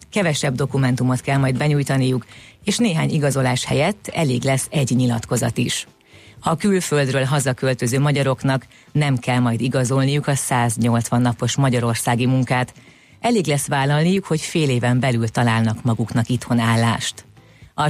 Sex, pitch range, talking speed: female, 120-145 Hz, 130 wpm